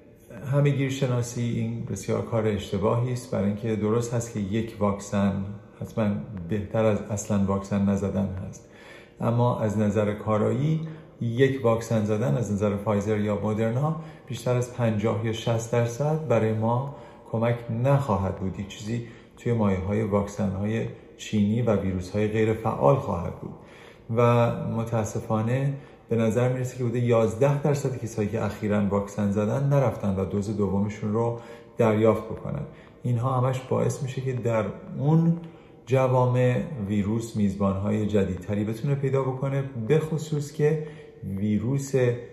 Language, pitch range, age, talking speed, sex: Persian, 105-125 Hz, 40-59, 140 wpm, male